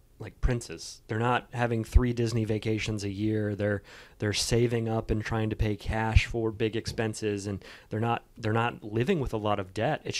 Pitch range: 105-120 Hz